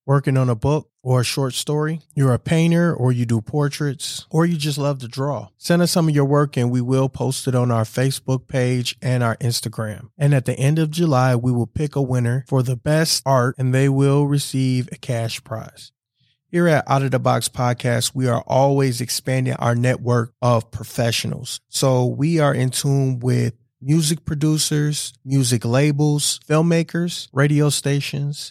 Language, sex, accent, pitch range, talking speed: English, male, American, 120-145 Hz, 185 wpm